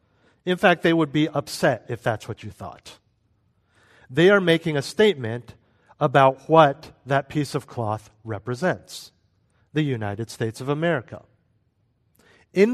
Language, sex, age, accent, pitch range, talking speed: English, male, 50-69, American, 120-180 Hz, 135 wpm